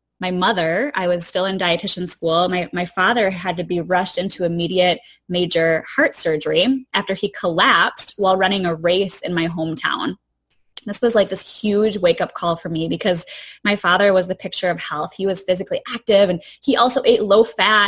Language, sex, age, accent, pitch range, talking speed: English, female, 10-29, American, 175-240 Hz, 190 wpm